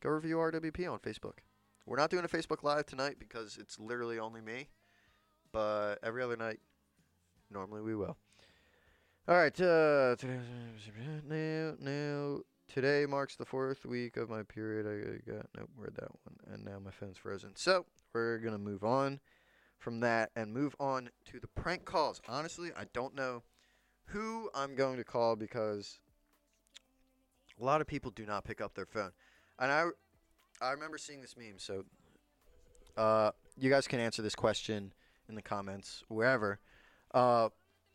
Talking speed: 160 wpm